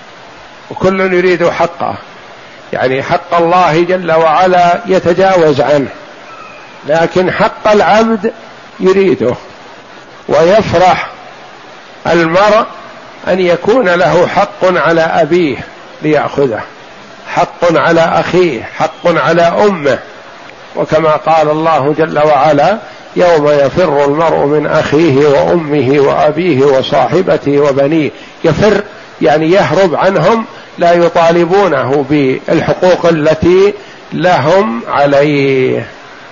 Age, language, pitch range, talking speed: 60-79, Arabic, 150-190 Hz, 90 wpm